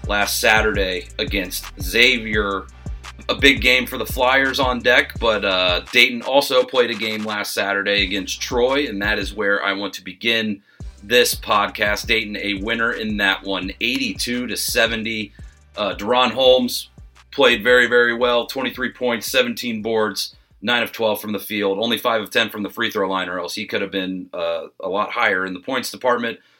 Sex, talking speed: male, 180 wpm